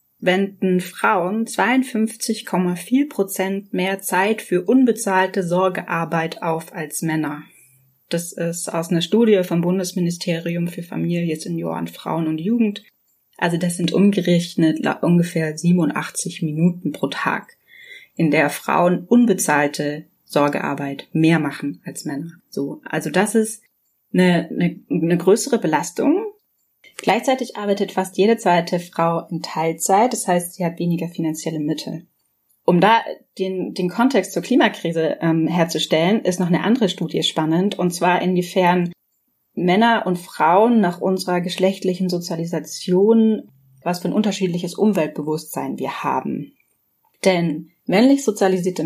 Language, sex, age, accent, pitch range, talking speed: German, female, 30-49, German, 165-200 Hz, 125 wpm